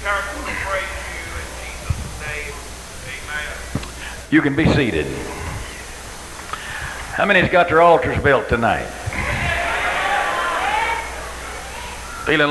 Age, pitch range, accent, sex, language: 60-79, 130-205 Hz, American, male, English